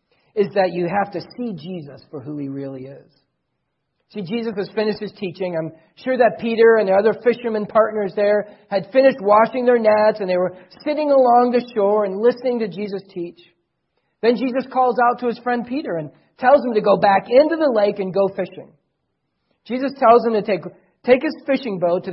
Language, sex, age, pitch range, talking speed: English, male, 40-59, 190-255 Hz, 205 wpm